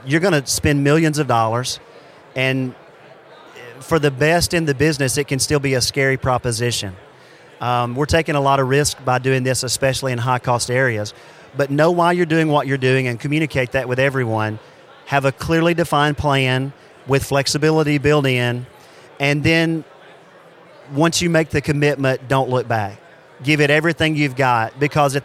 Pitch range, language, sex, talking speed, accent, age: 135-150 Hz, English, male, 180 wpm, American, 40-59